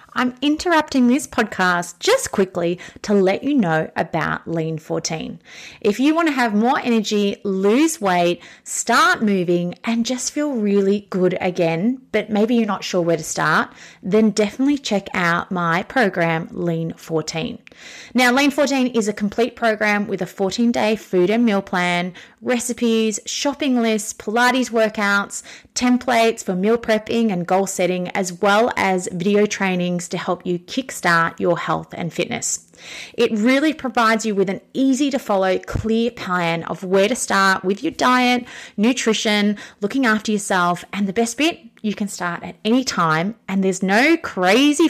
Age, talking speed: 30-49, 160 wpm